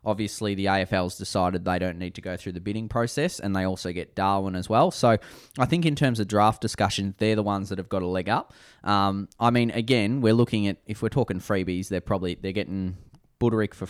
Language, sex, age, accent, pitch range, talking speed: English, male, 10-29, Australian, 90-105 Hz, 235 wpm